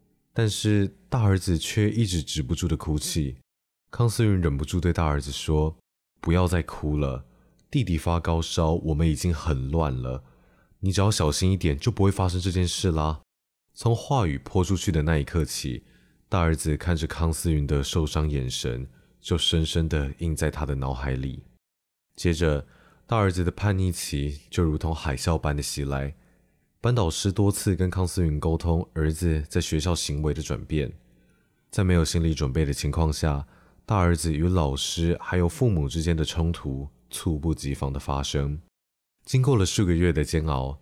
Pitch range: 70-90 Hz